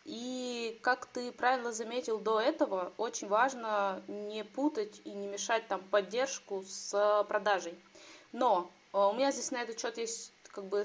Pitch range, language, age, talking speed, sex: 200-250 Hz, Russian, 20-39, 140 wpm, female